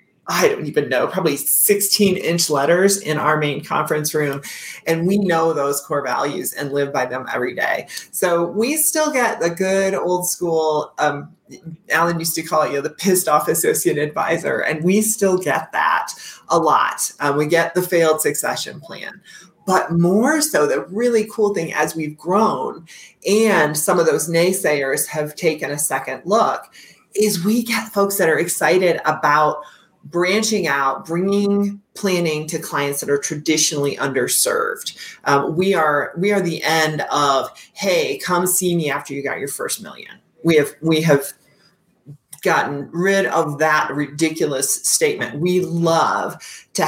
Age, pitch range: 30-49, 150-195 Hz